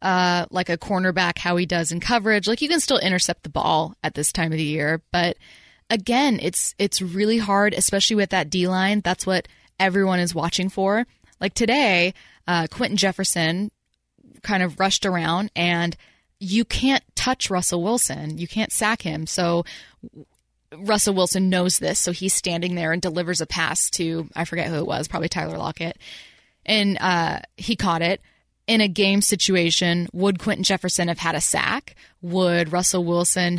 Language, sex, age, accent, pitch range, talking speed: English, female, 10-29, American, 170-200 Hz, 175 wpm